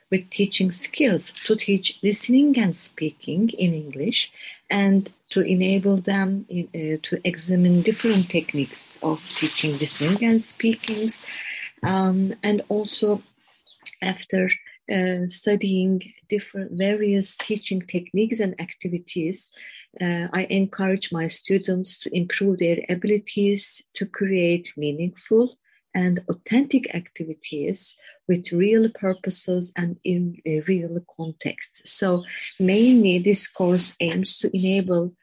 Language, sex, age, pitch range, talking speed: Turkish, female, 40-59, 175-205 Hz, 115 wpm